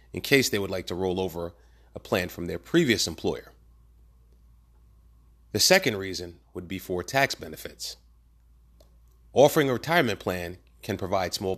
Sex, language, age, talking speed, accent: male, English, 30-49, 150 wpm, American